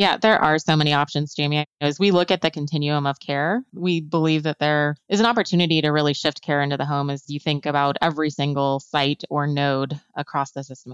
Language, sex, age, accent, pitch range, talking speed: English, female, 20-39, American, 145-180 Hz, 225 wpm